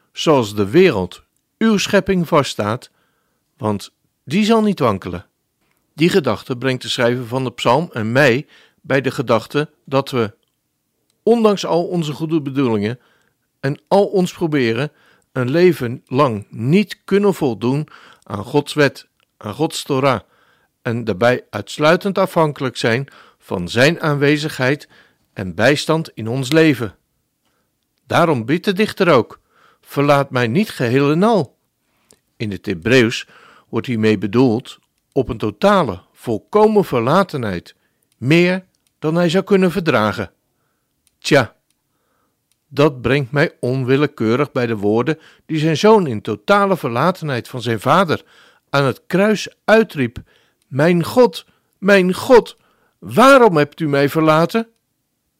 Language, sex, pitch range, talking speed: Dutch, male, 120-180 Hz, 130 wpm